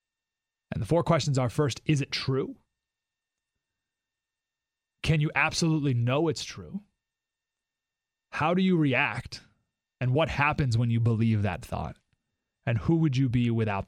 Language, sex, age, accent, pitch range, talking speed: English, male, 30-49, American, 120-165 Hz, 145 wpm